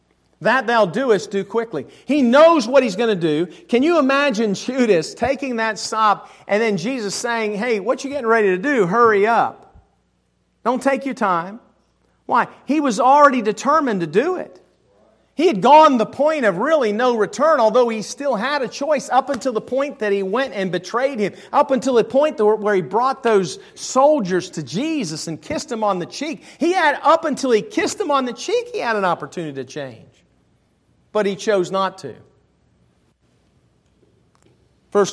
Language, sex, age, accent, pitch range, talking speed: English, male, 40-59, American, 175-255 Hz, 185 wpm